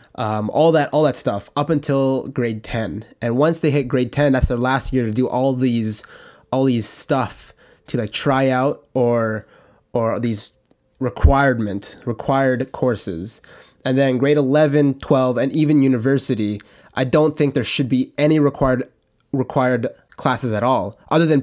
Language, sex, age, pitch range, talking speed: English, male, 20-39, 120-140 Hz, 165 wpm